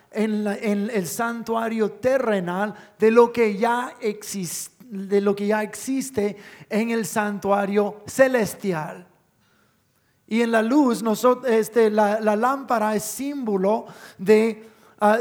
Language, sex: English, male